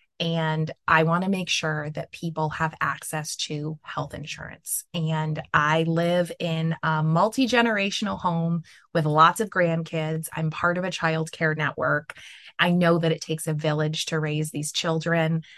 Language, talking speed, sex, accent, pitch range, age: English, 160 wpm, female, American, 155-170 Hz, 20-39